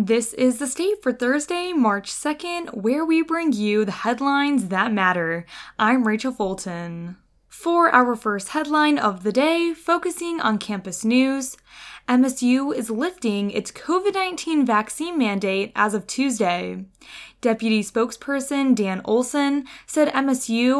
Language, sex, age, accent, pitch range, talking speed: English, female, 10-29, American, 205-275 Hz, 135 wpm